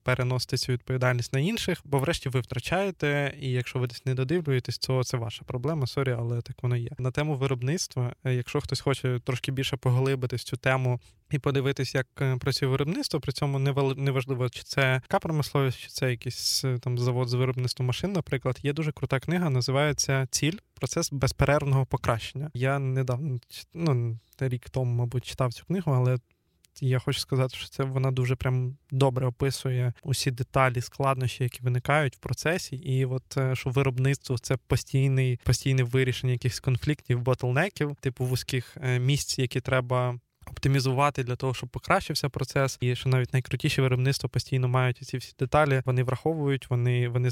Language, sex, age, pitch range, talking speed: Ukrainian, male, 20-39, 125-140 Hz, 160 wpm